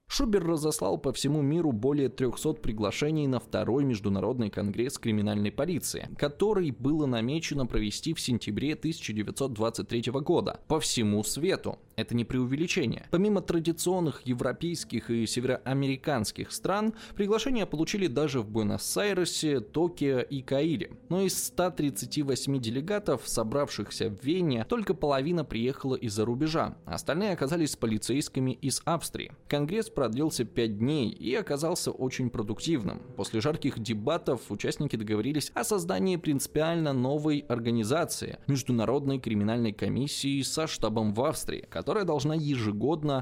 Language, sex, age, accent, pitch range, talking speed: Russian, male, 20-39, native, 115-160 Hz, 120 wpm